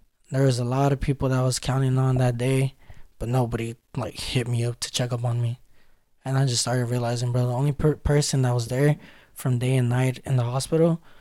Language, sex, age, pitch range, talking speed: English, male, 20-39, 120-140 Hz, 230 wpm